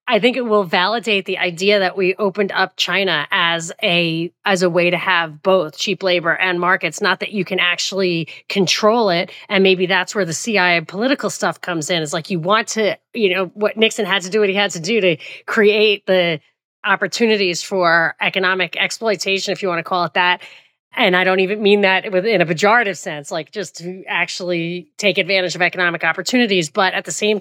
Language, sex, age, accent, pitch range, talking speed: English, female, 30-49, American, 175-210 Hz, 210 wpm